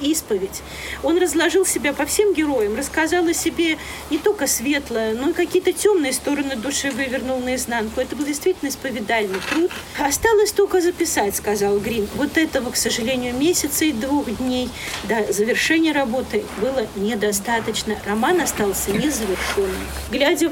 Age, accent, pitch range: 40-59, native, 235-310 Hz